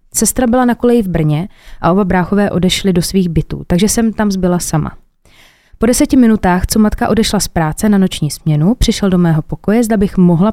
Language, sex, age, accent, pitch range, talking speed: Czech, female, 20-39, native, 175-210 Hz, 205 wpm